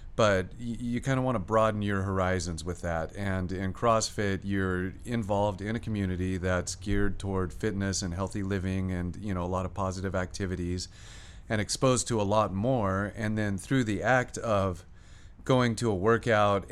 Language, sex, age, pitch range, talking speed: English, male, 40-59, 90-105 Hz, 180 wpm